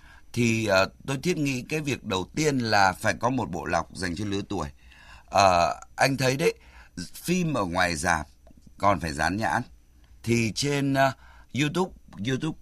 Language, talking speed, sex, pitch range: Vietnamese, 170 wpm, male, 80-125 Hz